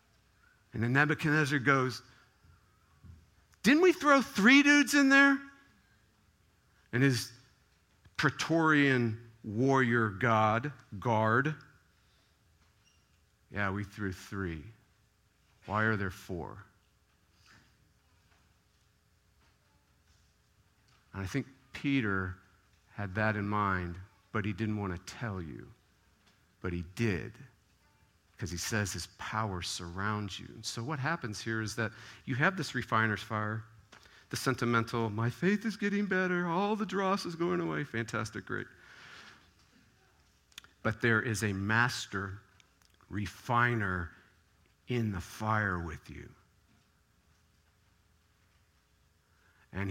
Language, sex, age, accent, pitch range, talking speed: English, male, 50-69, American, 95-120 Hz, 105 wpm